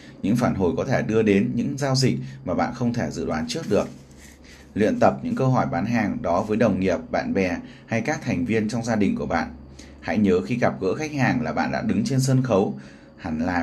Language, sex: Vietnamese, male